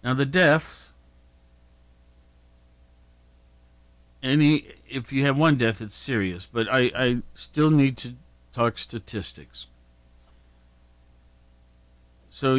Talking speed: 95 wpm